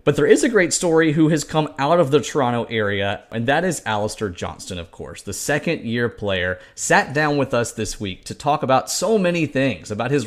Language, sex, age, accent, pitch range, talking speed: English, male, 30-49, American, 105-145 Hz, 220 wpm